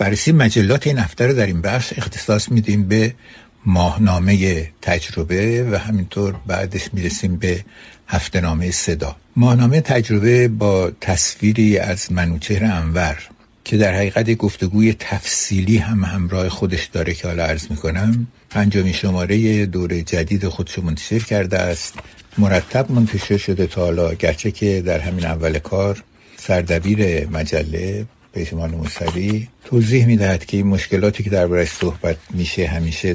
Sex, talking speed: male, 130 wpm